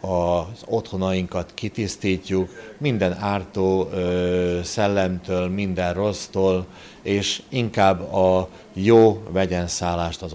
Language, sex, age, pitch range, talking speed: Hungarian, male, 60-79, 95-115 Hz, 80 wpm